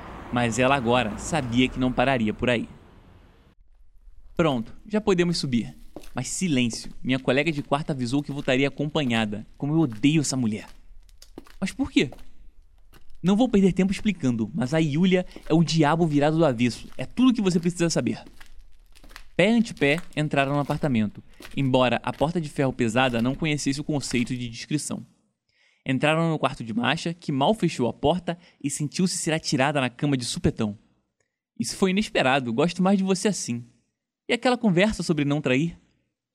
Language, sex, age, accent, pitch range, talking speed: English, male, 20-39, Brazilian, 125-165 Hz, 165 wpm